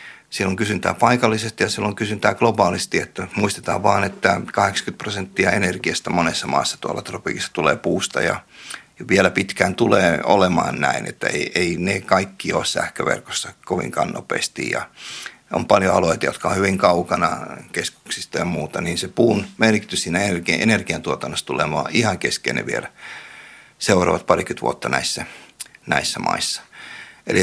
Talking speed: 145 wpm